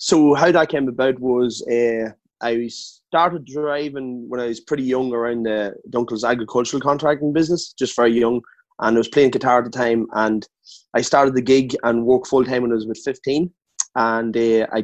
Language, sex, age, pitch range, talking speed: English, male, 20-39, 115-135 Hz, 195 wpm